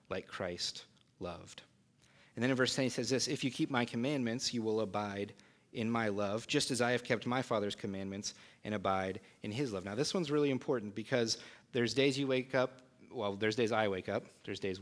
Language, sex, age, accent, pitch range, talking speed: English, male, 30-49, American, 95-120 Hz, 220 wpm